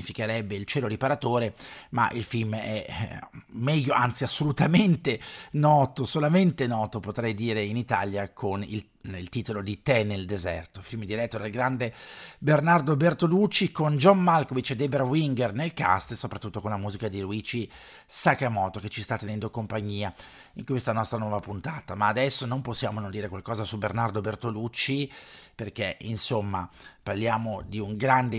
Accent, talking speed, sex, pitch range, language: native, 155 wpm, male, 105-130 Hz, Italian